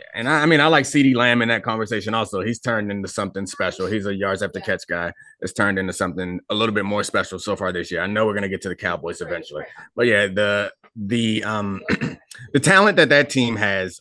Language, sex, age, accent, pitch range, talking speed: English, male, 30-49, American, 100-125 Hz, 245 wpm